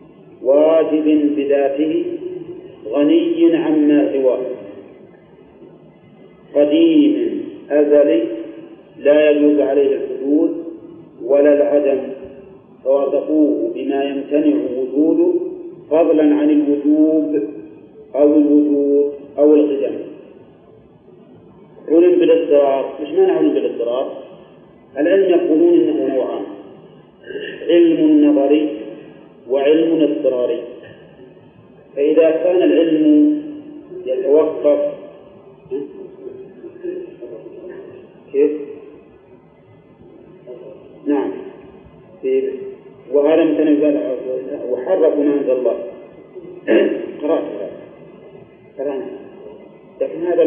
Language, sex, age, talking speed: Arabic, male, 40-59, 65 wpm